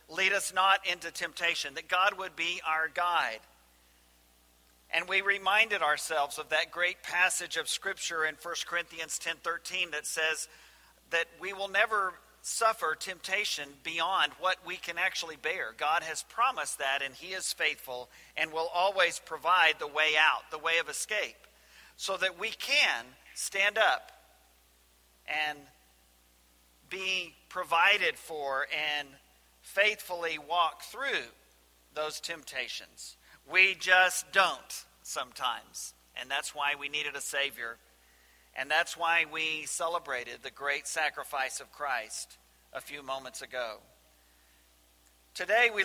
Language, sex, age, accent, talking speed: English, male, 50-69, American, 135 wpm